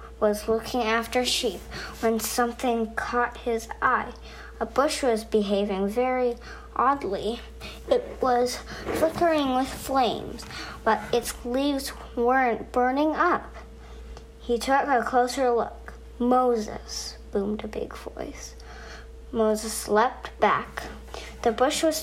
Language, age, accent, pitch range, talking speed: English, 40-59, American, 210-255 Hz, 115 wpm